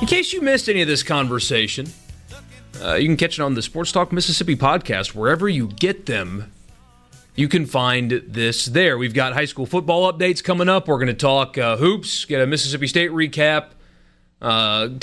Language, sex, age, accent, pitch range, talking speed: English, male, 30-49, American, 125-175 Hz, 190 wpm